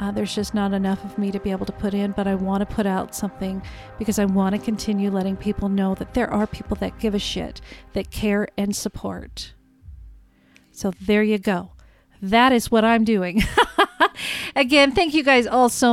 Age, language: 40-59, English